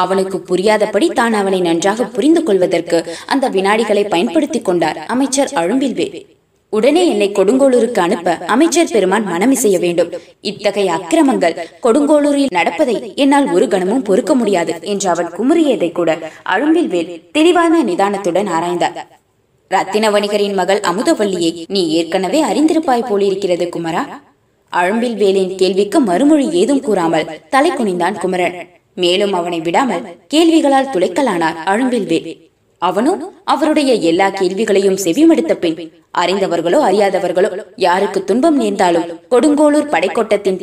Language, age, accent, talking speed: Tamil, 20-39, native, 110 wpm